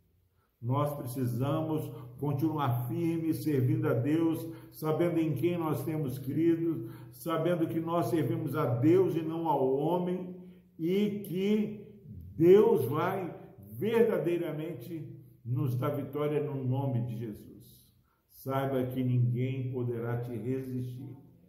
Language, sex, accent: Portuguese, male, Brazilian